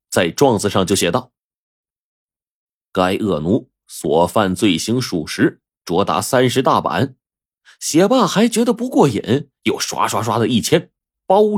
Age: 30-49